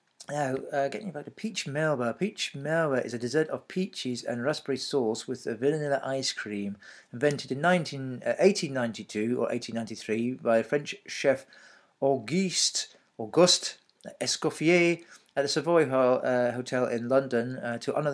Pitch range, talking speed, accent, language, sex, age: 120-165 Hz, 145 wpm, British, English, male, 40-59